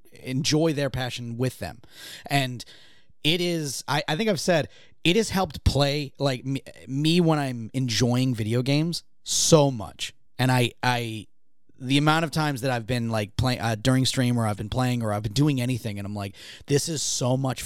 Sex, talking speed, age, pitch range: male, 195 wpm, 30-49, 115-150 Hz